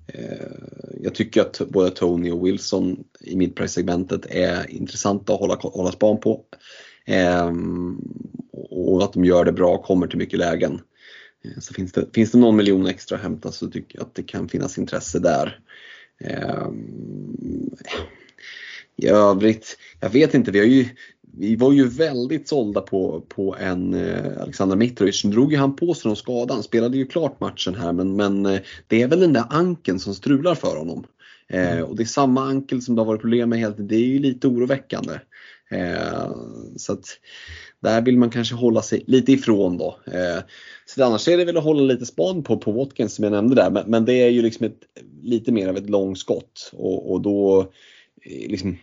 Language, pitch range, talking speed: Swedish, 95-125 Hz, 190 wpm